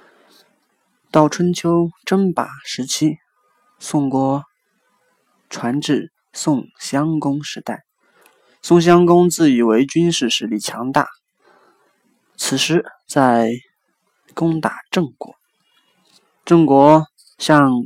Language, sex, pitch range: Chinese, male, 135-170 Hz